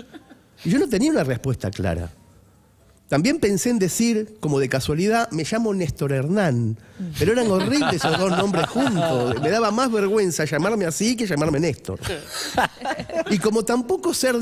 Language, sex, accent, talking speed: Spanish, male, Argentinian, 160 wpm